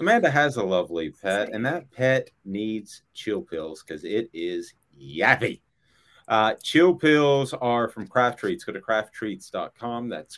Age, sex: 30-49, male